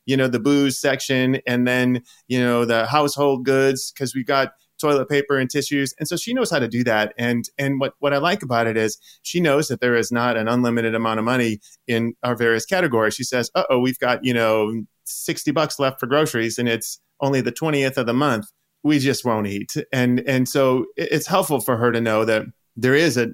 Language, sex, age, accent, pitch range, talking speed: English, male, 30-49, American, 110-135 Hz, 225 wpm